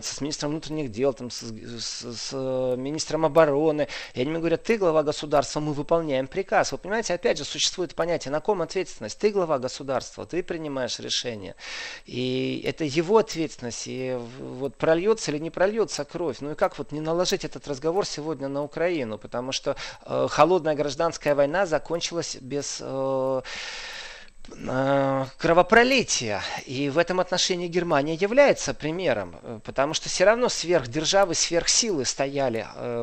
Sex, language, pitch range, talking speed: male, Russian, 130-170 Hz, 145 wpm